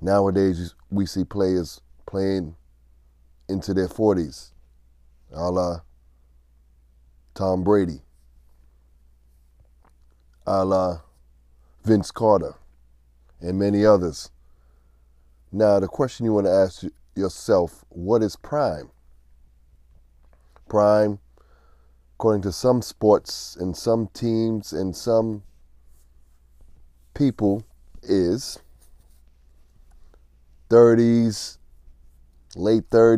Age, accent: 30-49, American